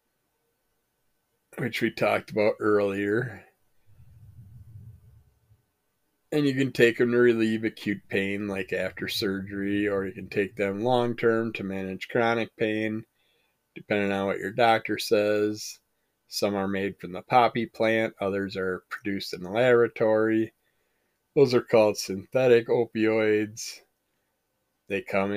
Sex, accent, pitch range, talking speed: male, American, 100-120 Hz, 130 wpm